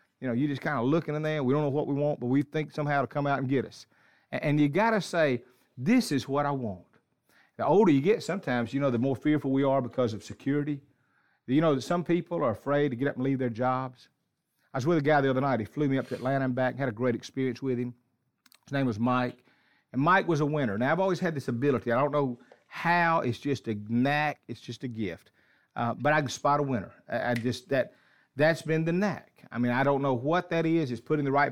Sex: male